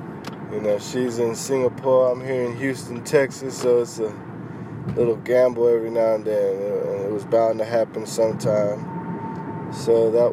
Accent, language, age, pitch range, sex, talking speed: American, English, 20-39, 125-150 Hz, male, 155 wpm